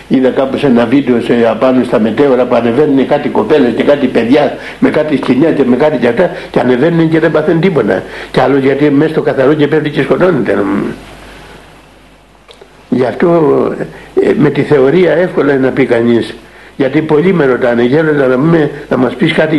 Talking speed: 185 wpm